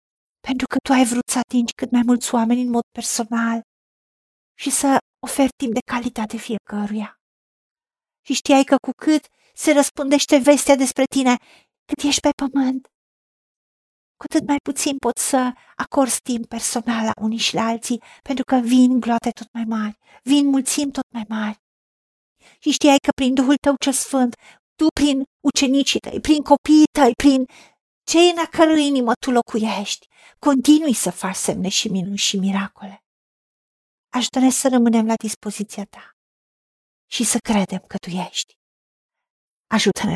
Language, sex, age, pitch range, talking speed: Romanian, female, 50-69, 220-275 Hz, 155 wpm